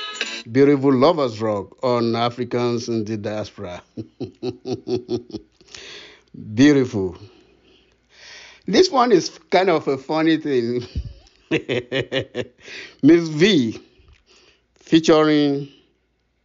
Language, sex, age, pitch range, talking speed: English, male, 60-79, 120-170 Hz, 75 wpm